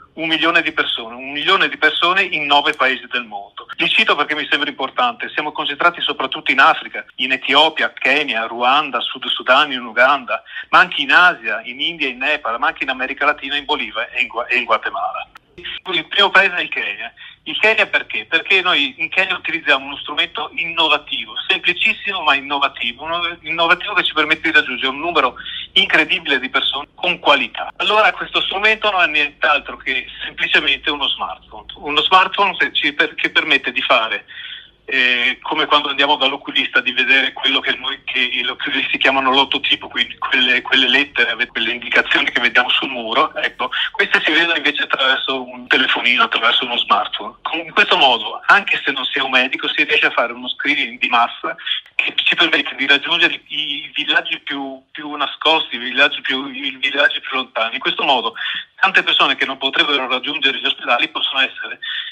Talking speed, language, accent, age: 180 wpm, Italian, native, 40-59